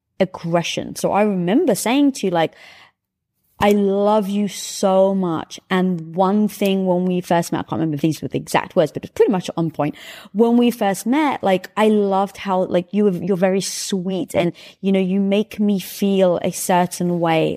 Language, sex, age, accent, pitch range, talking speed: English, female, 20-39, British, 170-215 Hz, 195 wpm